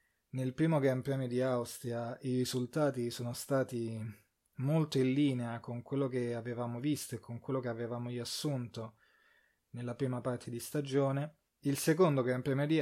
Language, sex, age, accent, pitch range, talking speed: Italian, male, 20-39, native, 115-135 Hz, 160 wpm